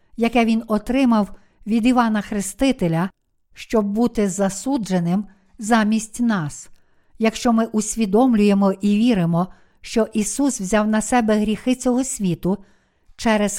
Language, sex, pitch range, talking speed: Ukrainian, female, 205-245 Hz, 110 wpm